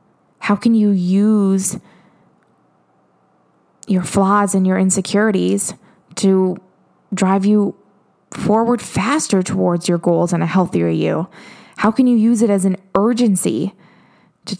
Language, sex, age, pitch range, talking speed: English, female, 20-39, 180-210 Hz, 125 wpm